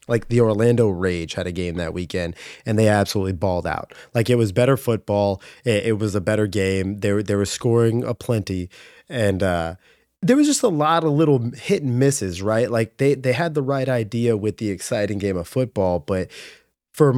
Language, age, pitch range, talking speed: English, 20-39, 95-125 Hz, 210 wpm